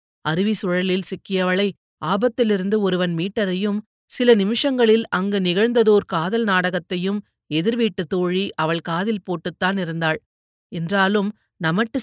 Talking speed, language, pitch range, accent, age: 100 wpm, Tamil, 180-240 Hz, native, 30-49